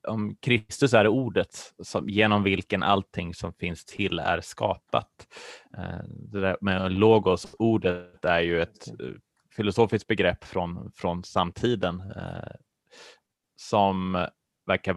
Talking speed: 95 wpm